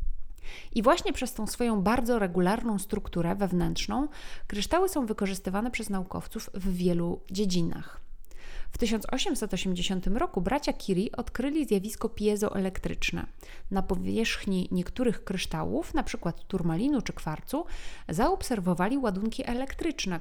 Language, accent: Polish, native